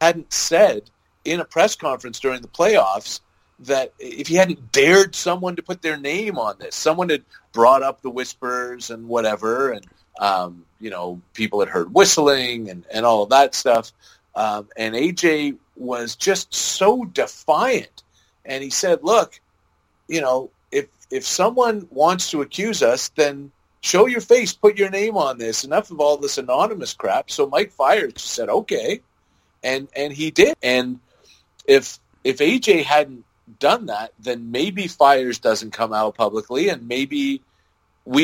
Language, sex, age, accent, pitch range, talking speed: English, male, 40-59, American, 105-165 Hz, 165 wpm